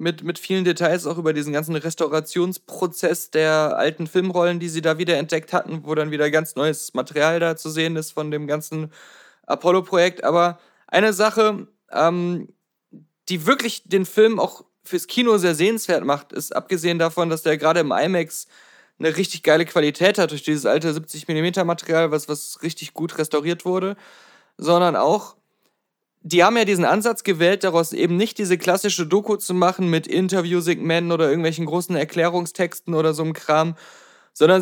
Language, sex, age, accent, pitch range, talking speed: German, male, 20-39, German, 165-200 Hz, 165 wpm